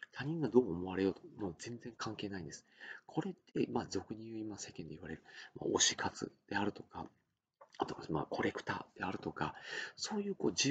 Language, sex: Japanese, male